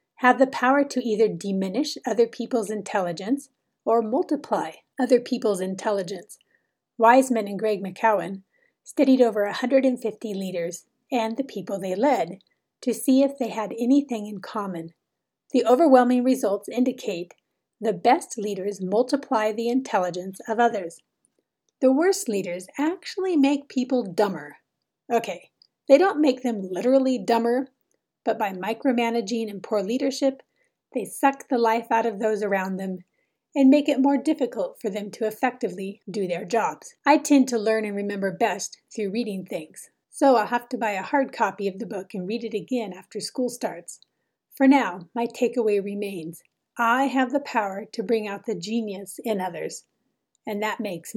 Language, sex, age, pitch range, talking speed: English, female, 40-59, 200-255 Hz, 160 wpm